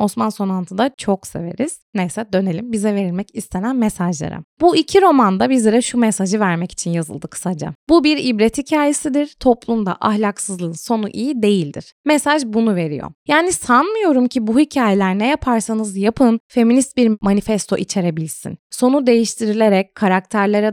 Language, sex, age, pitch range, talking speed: Turkish, female, 20-39, 195-255 Hz, 140 wpm